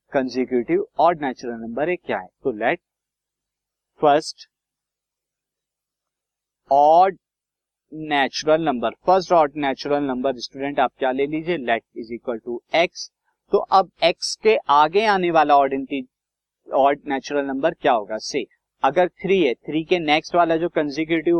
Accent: native